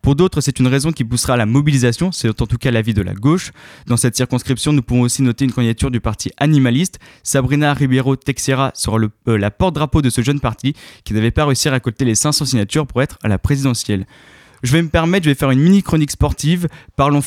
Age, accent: 20-39, French